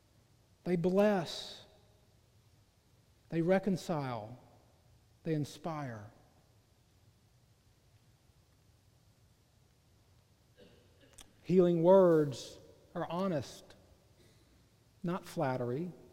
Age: 40-59